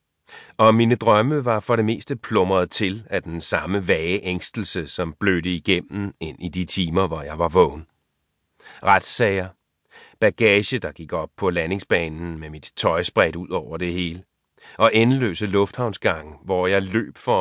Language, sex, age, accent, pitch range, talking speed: Danish, male, 30-49, native, 85-110 Hz, 160 wpm